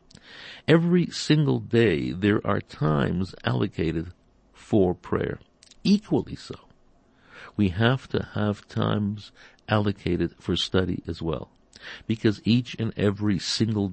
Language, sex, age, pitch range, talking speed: English, male, 60-79, 90-110 Hz, 110 wpm